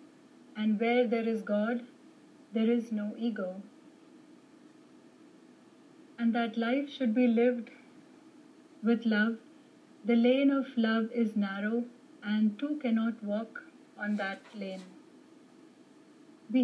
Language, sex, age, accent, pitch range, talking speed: English, female, 30-49, Indian, 225-300 Hz, 110 wpm